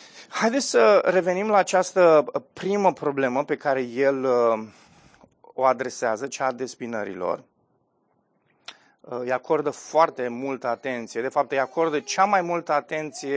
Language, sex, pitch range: Romanian, male, 120-155 Hz